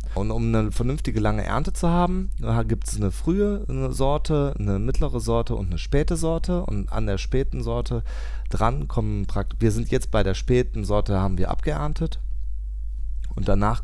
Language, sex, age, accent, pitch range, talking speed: German, male, 30-49, German, 85-115 Hz, 175 wpm